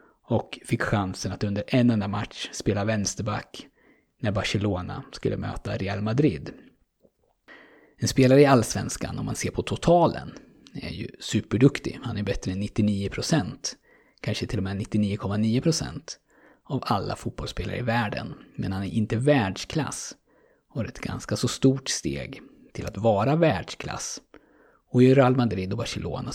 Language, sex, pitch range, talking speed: Swedish, male, 105-130 Hz, 145 wpm